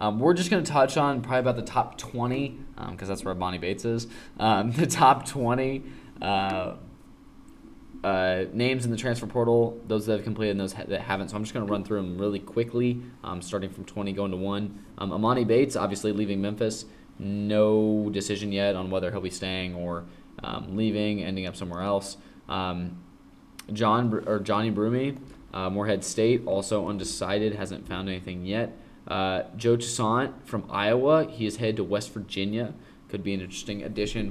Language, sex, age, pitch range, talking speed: English, male, 20-39, 95-115 Hz, 180 wpm